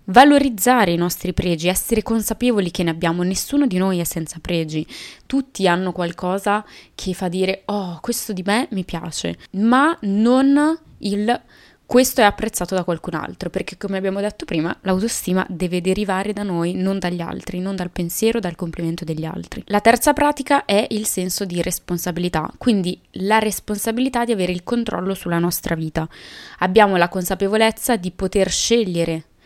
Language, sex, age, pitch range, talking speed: Italian, female, 20-39, 175-215 Hz, 165 wpm